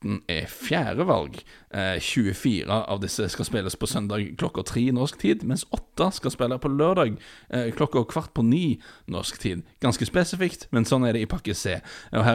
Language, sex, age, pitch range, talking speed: English, male, 30-49, 100-125 Hz, 185 wpm